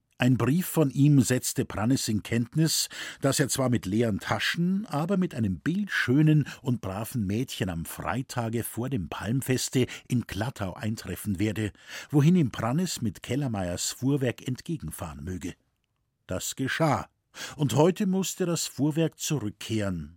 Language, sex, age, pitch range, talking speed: German, male, 50-69, 105-145 Hz, 135 wpm